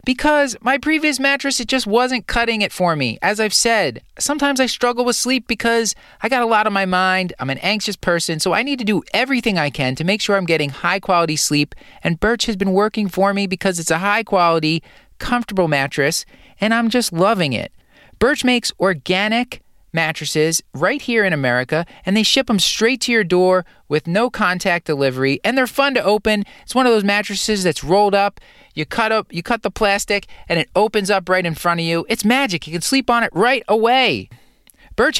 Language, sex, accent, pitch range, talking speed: English, male, American, 180-245 Hz, 210 wpm